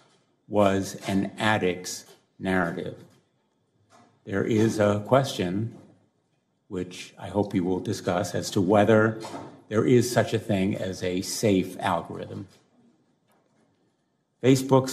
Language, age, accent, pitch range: English, 50-69, American, 95-115 Hz